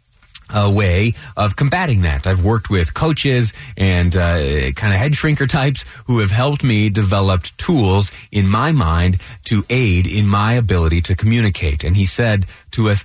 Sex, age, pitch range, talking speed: male, 30-49, 95-120 Hz, 170 wpm